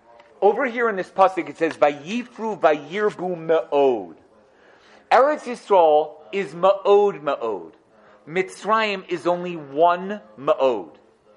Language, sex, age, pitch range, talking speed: English, male, 40-59, 150-195 Hz, 105 wpm